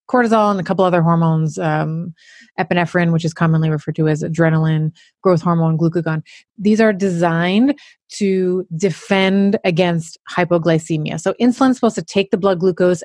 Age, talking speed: 30-49, 155 wpm